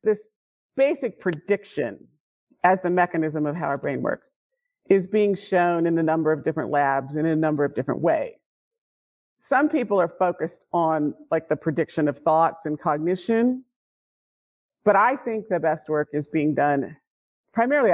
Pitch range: 165-250 Hz